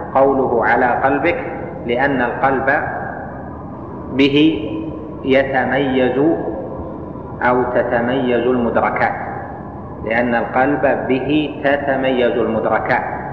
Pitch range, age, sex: 115-140 Hz, 30-49, male